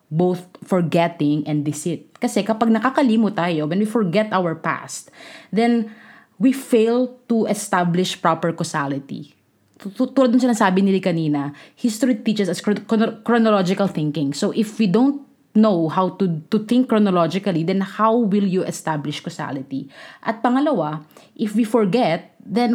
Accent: Filipino